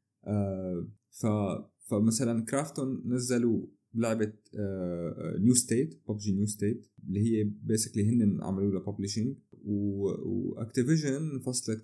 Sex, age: male, 30-49